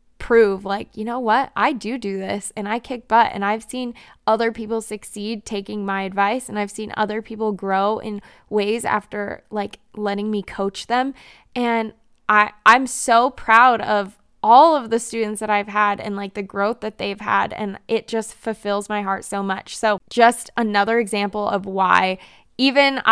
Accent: American